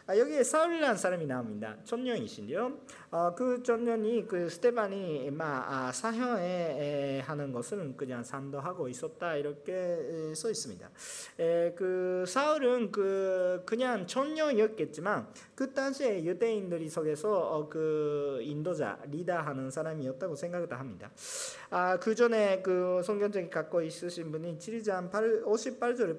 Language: Korean